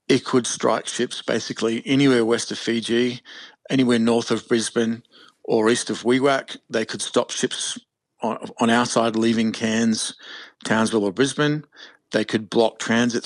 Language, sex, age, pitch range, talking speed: English, male, 40-59, 110-125 Hz, 155 wpm